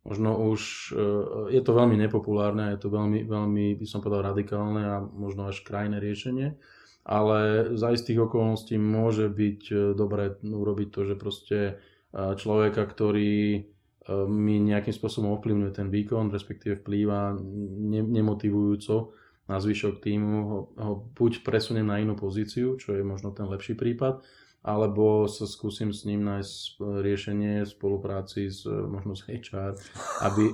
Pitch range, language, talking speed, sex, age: 100-110 Hz, Slovak, 140 wpm, male, 20-39